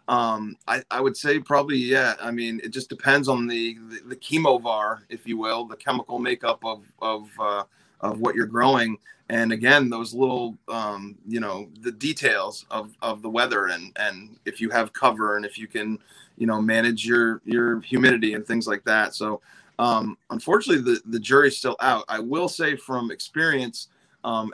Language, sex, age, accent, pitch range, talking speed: English, male, 30-49, American, 110-125 Hz, 190 wpm